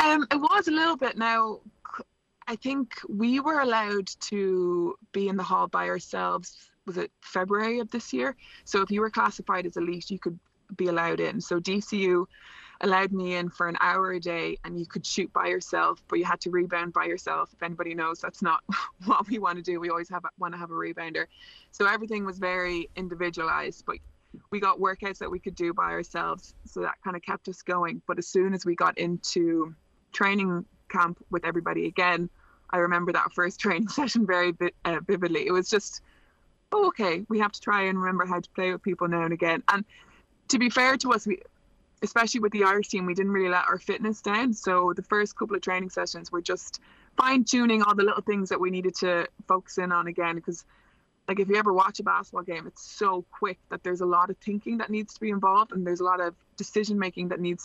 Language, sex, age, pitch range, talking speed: English, female, 20-39, 175-210 Hz, 220 wpm